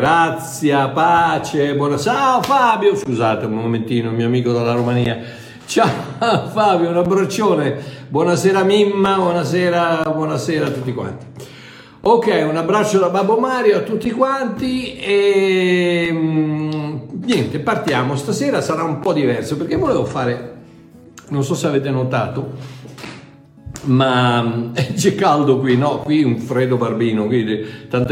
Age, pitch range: 60-79, 125-165 Hz